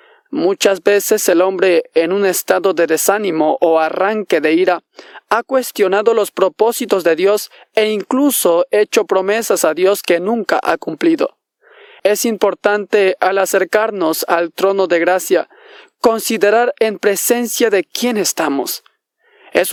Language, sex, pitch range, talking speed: Spanish, male, 180-225 Hz, 135 wpm